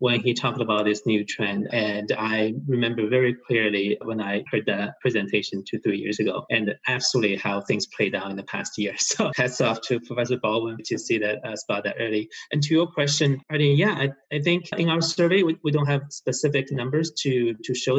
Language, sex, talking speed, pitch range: English, male, 225 wpm, 115-155 Hz